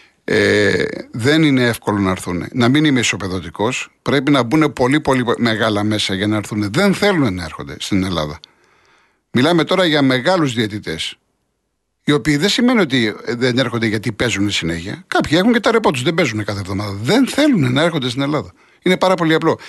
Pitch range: 115-155 Hz